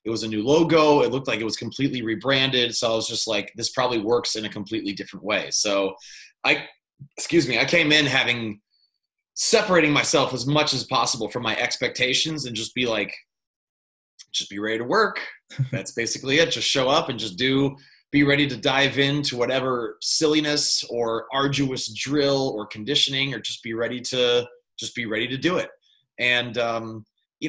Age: 30-49